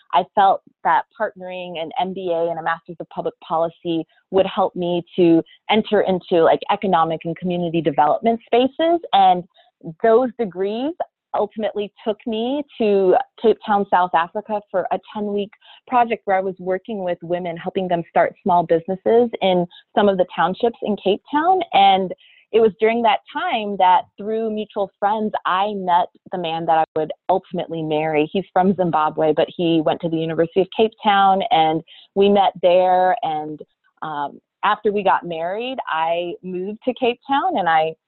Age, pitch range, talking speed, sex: 30-49, 170-220 Hz, 170 wpm, female